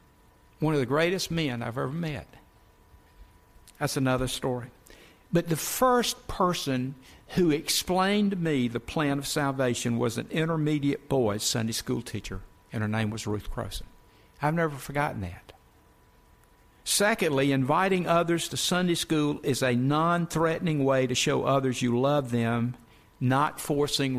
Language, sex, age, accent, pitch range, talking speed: English, male, 60-79, American, 125-160 Hz, 145 wpm